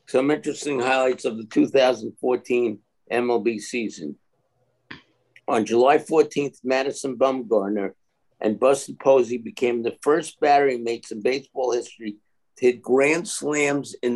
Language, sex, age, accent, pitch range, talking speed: English, male, 60-79, American, 120-150 Hz, 125 wpm